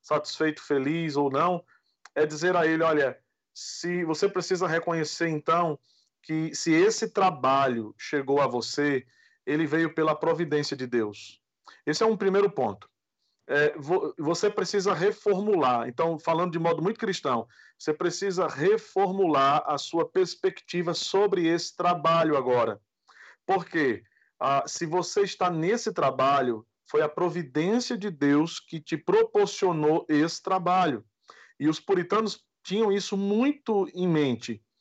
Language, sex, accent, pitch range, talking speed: Portuguese, male, Brazilian, 150-205 Hz, 135 wpm